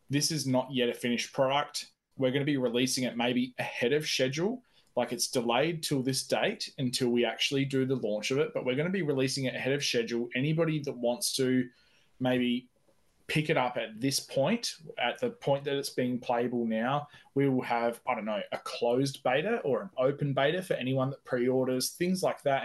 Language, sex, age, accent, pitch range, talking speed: English, male, 20-39, Australian, 120-150 Hz, 210 wpm